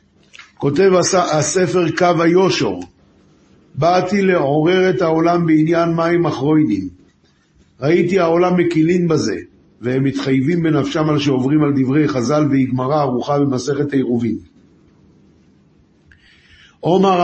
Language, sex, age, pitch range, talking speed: Hebrew, male, 50-69, 130-170 Hz, 95 wpm